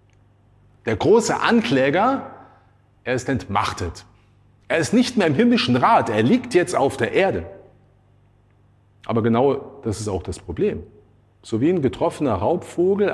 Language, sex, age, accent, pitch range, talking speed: German, male, 40-59, German, 100-120 Hz, 140 wpm